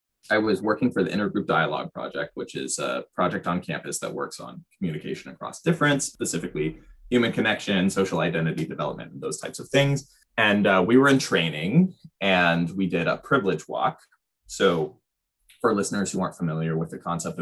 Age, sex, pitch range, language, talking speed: 20-39, male, 85-110 Hz, English, 180 wpm